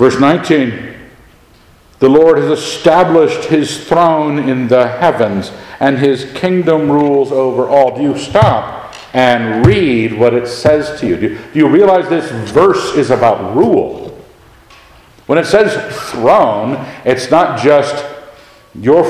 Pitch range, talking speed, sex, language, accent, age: 120-165 Hz, 140 wpm, male, English, American, 50-69